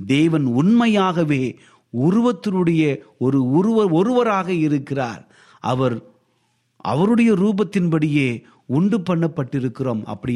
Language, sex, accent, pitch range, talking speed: Tamil, male, native, 140-215 Hz, 70 wpm